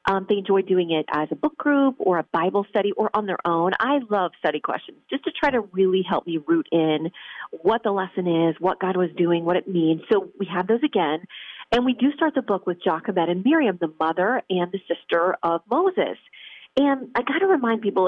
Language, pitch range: English, 180-245 Hz